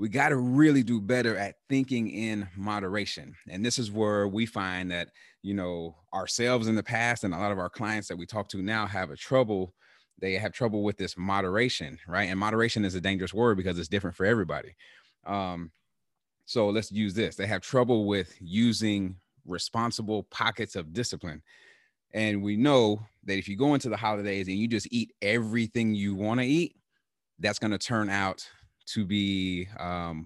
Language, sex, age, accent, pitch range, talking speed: English, male, 30-49, American, 95-110 Hz, 190 wpm